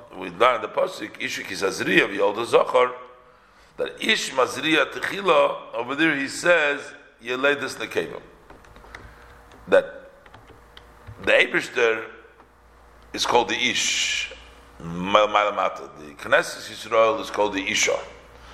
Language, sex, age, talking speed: English, male, 50-69, 110 wpm